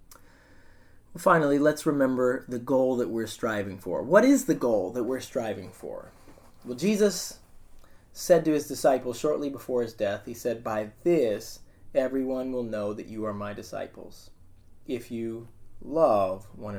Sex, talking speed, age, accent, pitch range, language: male, 155 wpm, 30-49, American, 105-130 Hz, English